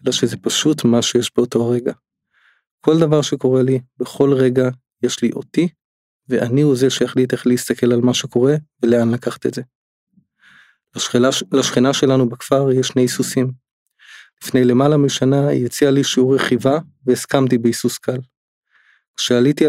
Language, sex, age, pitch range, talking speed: Hebrew, male, 20-39, 120-135 Hz, 145 wpm